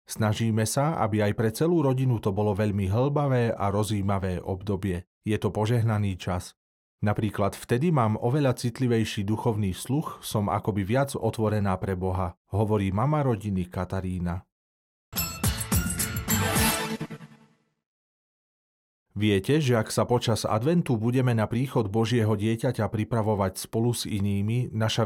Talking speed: 120 wpm